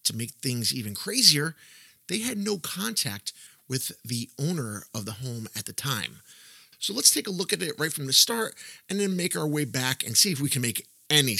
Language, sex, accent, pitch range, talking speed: English, male, American, 125-180 Hz, 220 wpm